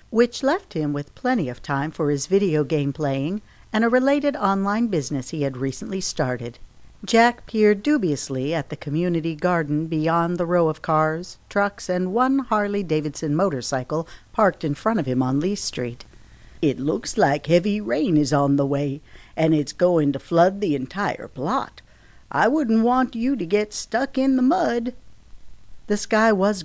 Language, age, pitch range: English, 50-69, 145-210 Hz